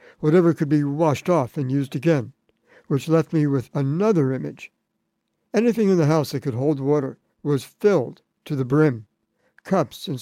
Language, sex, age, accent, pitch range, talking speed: English, male, 60-79, American, 135-170 Hz, 170 wpm